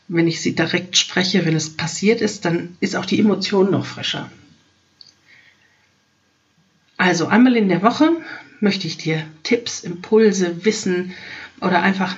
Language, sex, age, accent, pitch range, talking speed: German, female, 50-69, German, 170-225 Hz, 145 wpm